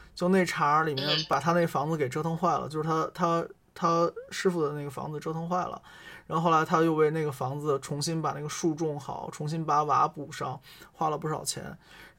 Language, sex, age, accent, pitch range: Chinese, male, 20-39, native, 145-175 Hz